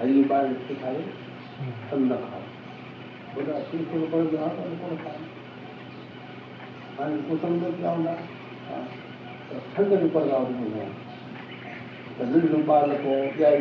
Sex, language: male, Hindi